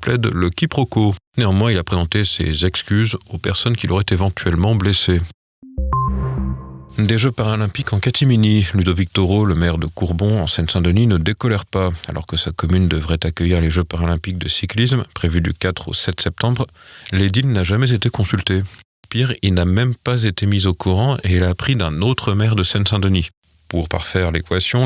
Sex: male